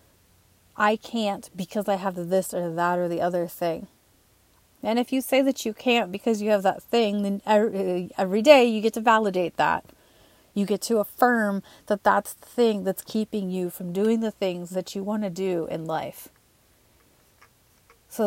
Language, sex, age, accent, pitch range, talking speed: English, female, 30-49, American, 185-220 Hz, 185 wpm